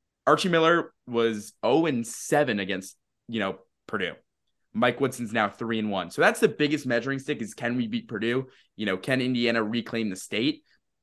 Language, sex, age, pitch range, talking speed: English, male, 20-39, 110-135 Hz, 170 wpm